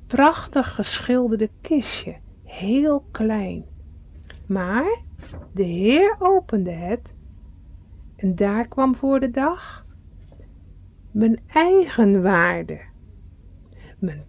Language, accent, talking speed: Dutch, Dutch, 85 wpm